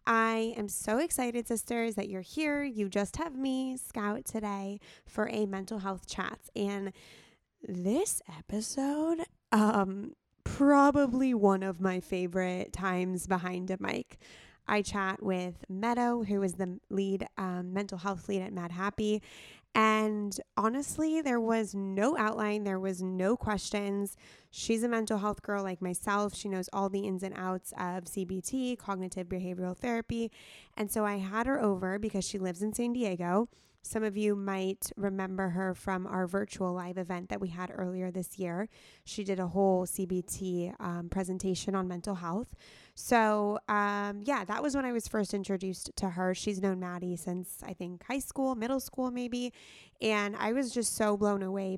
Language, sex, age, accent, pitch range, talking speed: English, female, 20-39, American, 190-220 Hz, 170 wpm